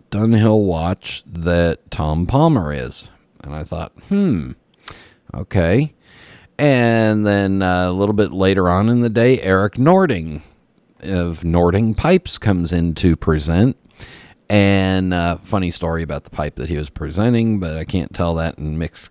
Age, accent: 40-59, American